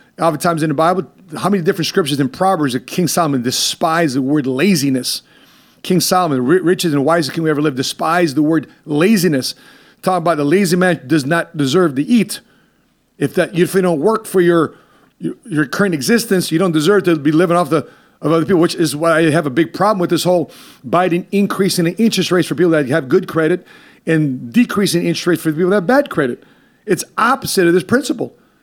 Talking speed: 210 wpm